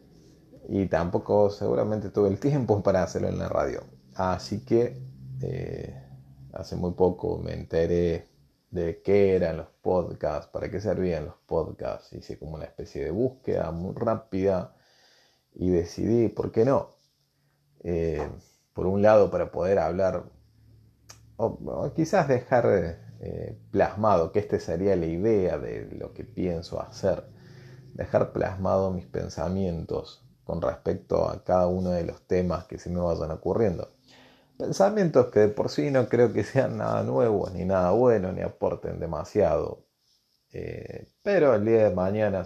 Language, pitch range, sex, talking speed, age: Spanish, 85-115 Hz, male, 150 wpm, 30-49